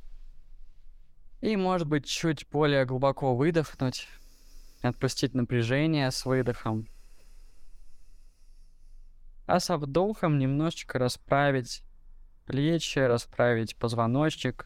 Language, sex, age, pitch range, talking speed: Russian, male, 20-39, 80-130 Hz, 80 wpm